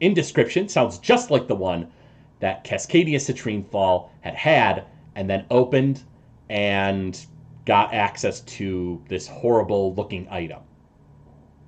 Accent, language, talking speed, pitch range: American, English, 125 wpm, 100-170 Hz